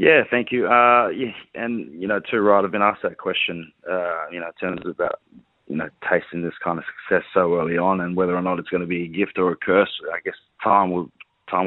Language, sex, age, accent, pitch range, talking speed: English, male, 20-39, Australian, 85-100 Hz, 245 wpm